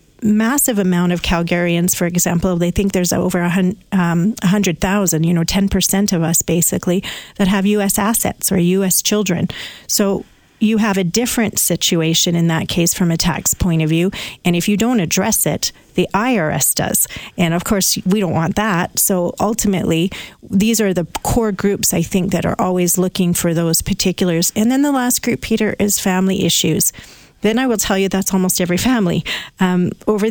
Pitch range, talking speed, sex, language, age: 175-200 Hz, 180 wpm, female, English, 40-59